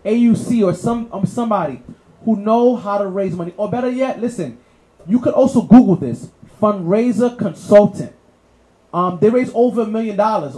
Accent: American